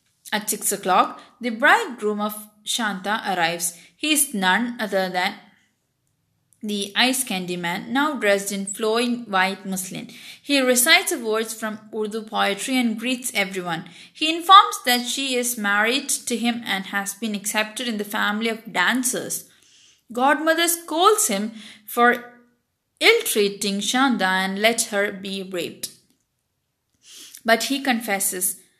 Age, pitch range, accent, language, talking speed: 20-39, 200-270 Hz, Indian, English, 135 wpm